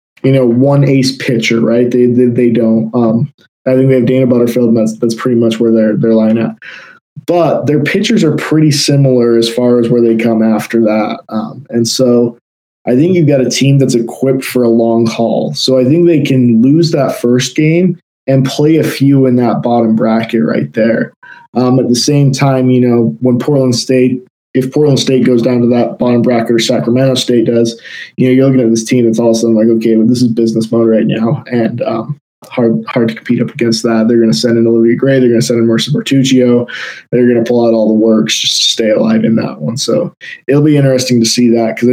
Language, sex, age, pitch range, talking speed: English, male, 20-39, 115-130 Hz, 235 wpm